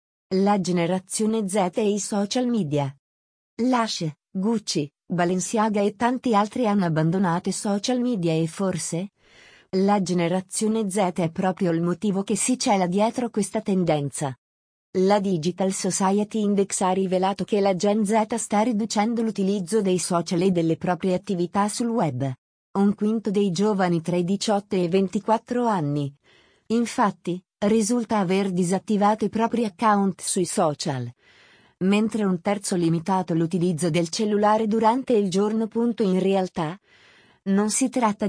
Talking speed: 140 wpm